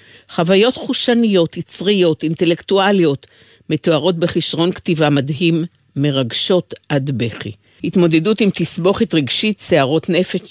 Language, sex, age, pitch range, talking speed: Hebrew, female, 50-69, 130-180 Hz, 95 wpm